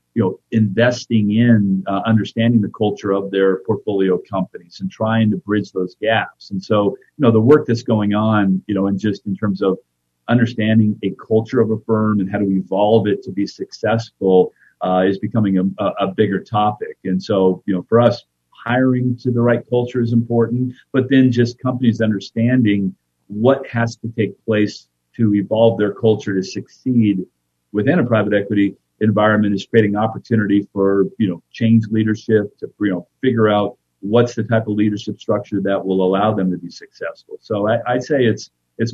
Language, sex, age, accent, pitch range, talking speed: English, male, 40-59, American, 100-115 Hz, 185 wpm